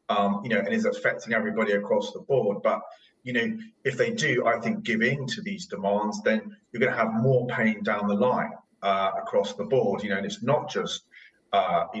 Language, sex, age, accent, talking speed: English, male, 30-49, British, 225 wpm